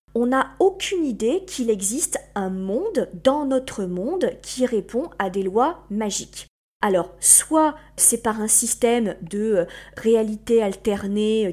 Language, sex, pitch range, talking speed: French, female, 190-250 Hz, 135 wpm